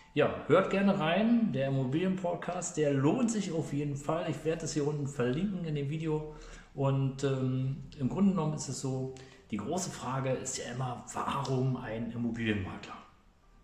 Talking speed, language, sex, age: 165 wpm, German, male, 40-59